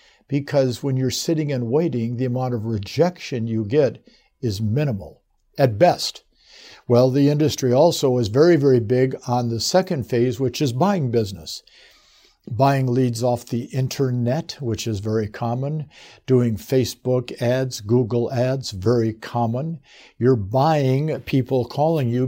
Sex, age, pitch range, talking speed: male, 60-79, 120-145 Hz, 145 wpm